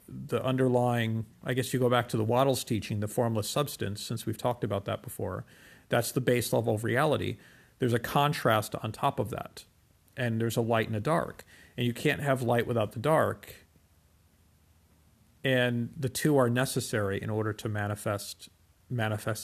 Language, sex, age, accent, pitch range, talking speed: English, male, 40-59, American, 105-125 Hz, 180 wpm